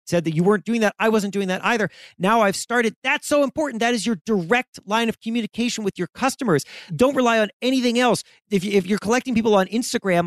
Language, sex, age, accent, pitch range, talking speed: English, male, 40-59, American, 170-230 Hz, 220 wpm